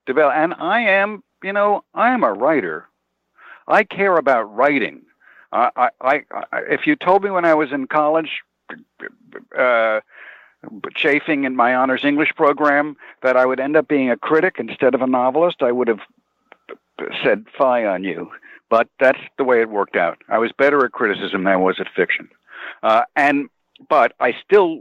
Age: 60-79